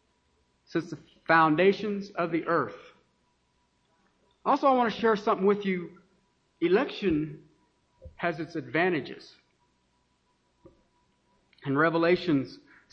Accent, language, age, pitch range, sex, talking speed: American, English, 40-59, 160-230 Hz, male, 95 wpm